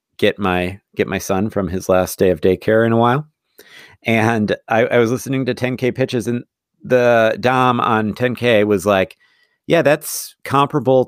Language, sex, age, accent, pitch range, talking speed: English, male, 40-59, American, 95-120 Hz, 175 wpm